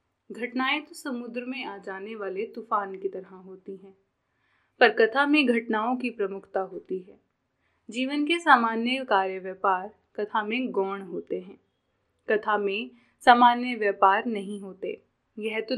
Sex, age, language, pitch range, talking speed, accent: female, 10-29, Hindi, 200-260 Hz, 145 wpm, native